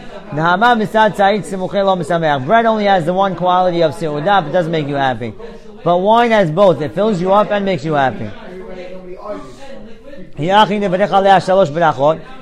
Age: 40-59